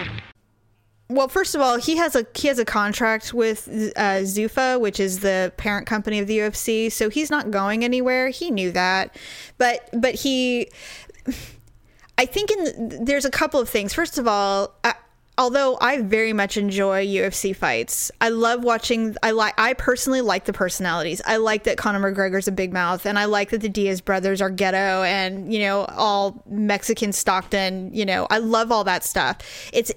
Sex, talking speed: female, 185 wpm